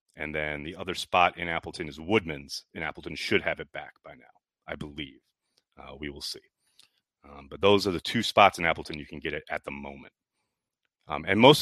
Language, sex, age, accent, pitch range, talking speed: English, male, 30-49, American, 95-145 Hz, 215 wpm